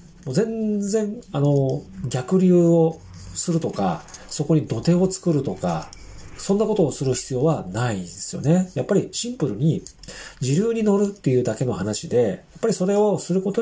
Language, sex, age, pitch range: Japanese, male, 40-59, 125-165 Hz